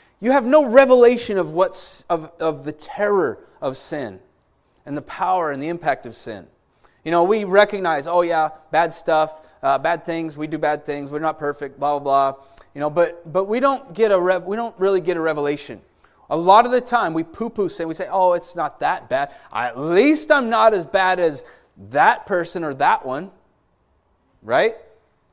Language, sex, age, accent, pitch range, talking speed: English, male, 30-49, American, 150-225 Hz, 200 wpm